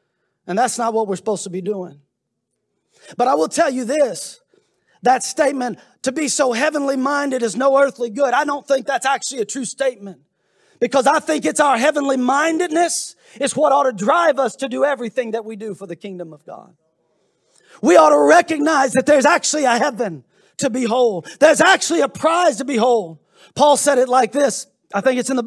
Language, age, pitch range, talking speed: English, 30-49, 230-280 Hz, 200 wpm